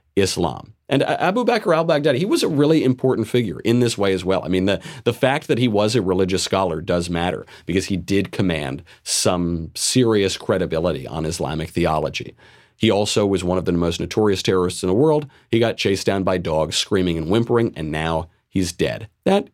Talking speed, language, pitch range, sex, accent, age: 200 wpm, English, 90-120 Hz, male, American, 40-59